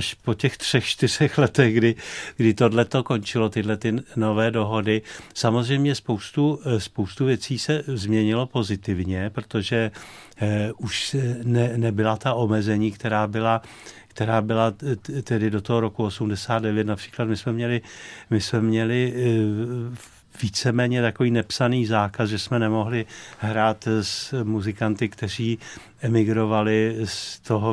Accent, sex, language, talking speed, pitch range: native, male, Czech, 120 wpm, 105-120 Hz